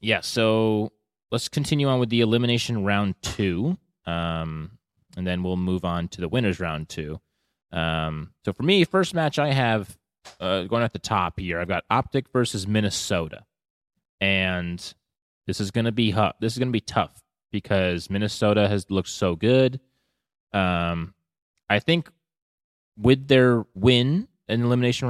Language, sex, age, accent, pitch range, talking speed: English, male, 20-39, American, 95-125 Hz, 155 wpm